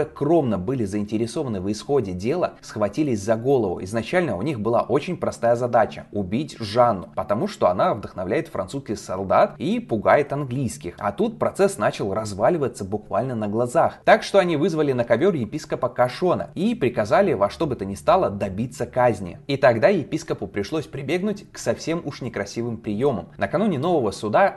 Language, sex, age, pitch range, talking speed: Russian, male, 20-39, 110-155 Hz, 160 wpm